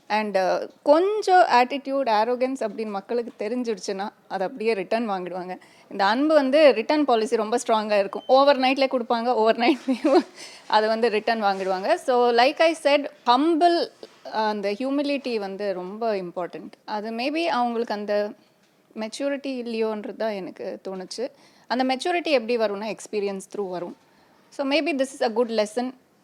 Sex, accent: female, native